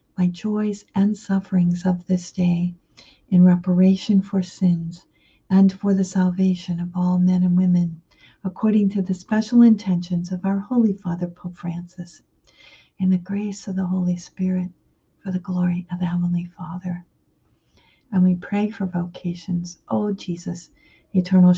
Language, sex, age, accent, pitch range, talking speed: English, female, 50-69, American, 175-190 Hz, 145 wpm